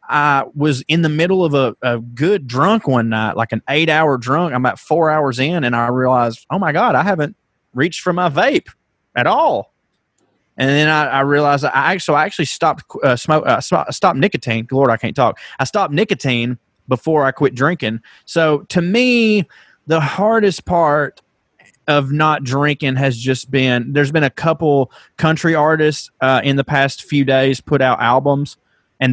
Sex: male